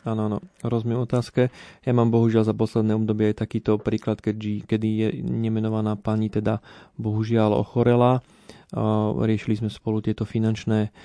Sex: male